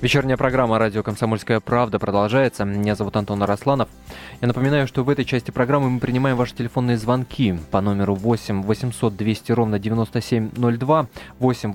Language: Russian